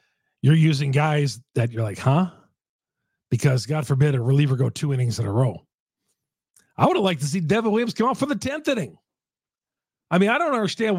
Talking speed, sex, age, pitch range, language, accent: 200 wpm, male, 40-59, 130-185 Hz, English, American